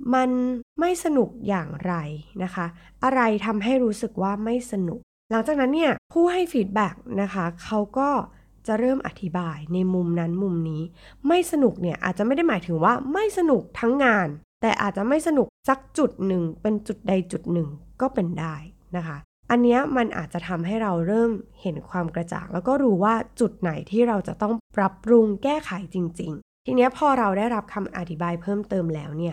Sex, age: female, 20-39